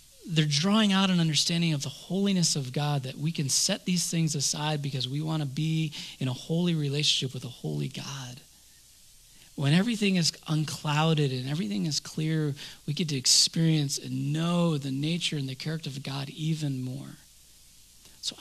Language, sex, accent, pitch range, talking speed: English, male, American, 140-190 Hz, 175 wpm